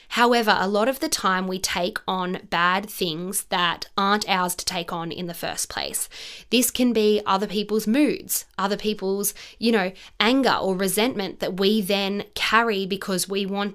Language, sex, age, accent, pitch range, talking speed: English, female, 20-39, Australian, 190-220 Hz, 180 wpm